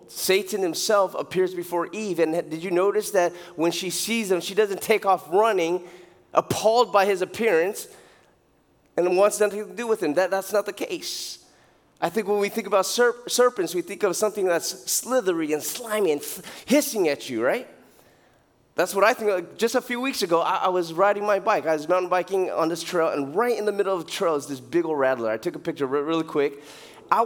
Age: 20-39